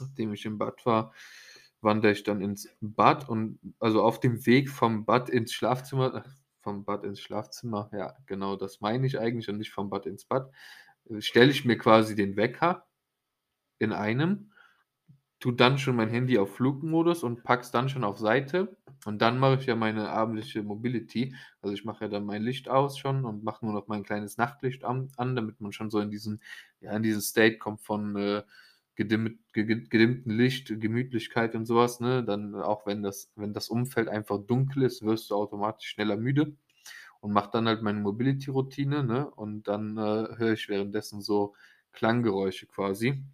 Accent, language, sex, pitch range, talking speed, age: German, German, male, 105-125 Hz, 180 wpm, 20-39